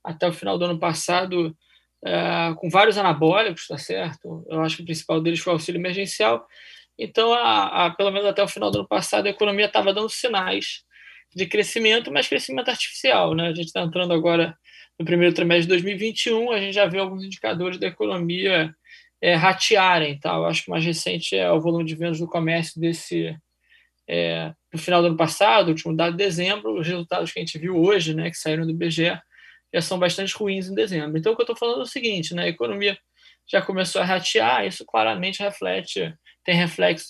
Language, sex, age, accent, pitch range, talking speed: Portuguese, male, 20-39, Brazilian, 160-195 Hz, 205 wpm